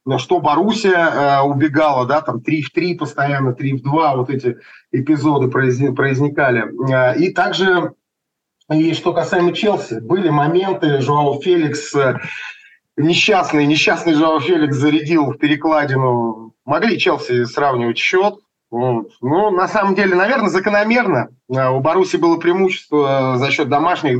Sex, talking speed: male, 130 wpm